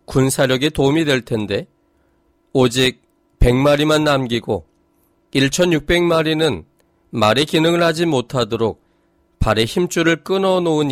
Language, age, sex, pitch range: Korean, 40-59, male, 115-170 Hz